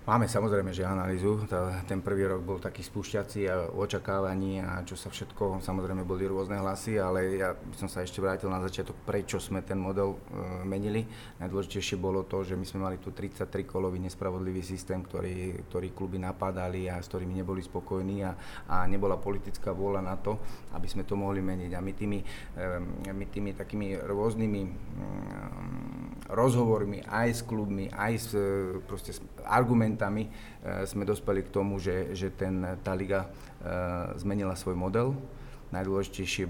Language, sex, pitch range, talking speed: Slovak, male, 95-105 Hz, 150 wpm